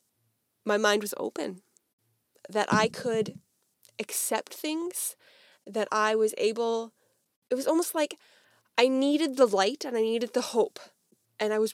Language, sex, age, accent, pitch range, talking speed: English, female, 10-29, American, 205-285 Hz, 150 wpm